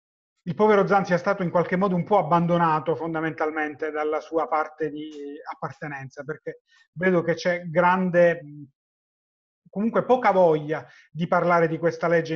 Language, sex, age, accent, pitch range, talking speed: Italian, male, 30-49, native, 155-190 Hz, 145 wpm